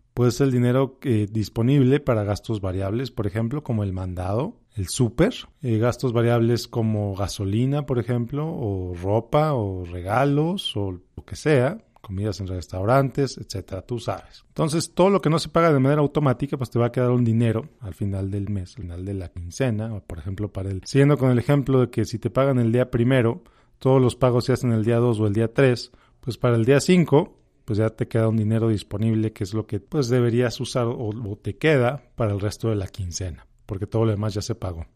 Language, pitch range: Spanish, 110-135 Hz